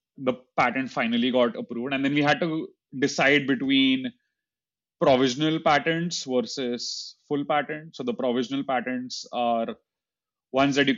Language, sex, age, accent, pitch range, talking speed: English, male, 30-49, Indian, 125-165 Hz, 135 wpm